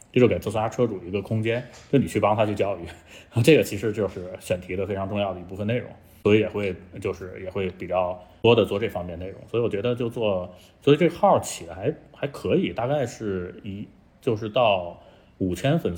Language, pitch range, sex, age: Chinese, 95-115 Hz, male, 20-39